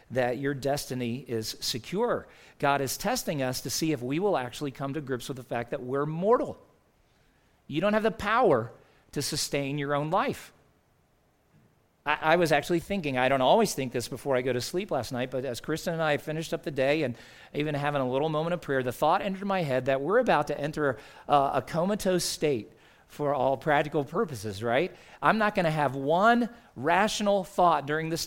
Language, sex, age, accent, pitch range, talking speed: English, male, 40-59, American, 130-170 Hz, 205 wpm